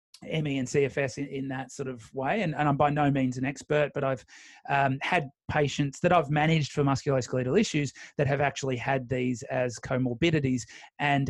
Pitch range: 130-145 Hz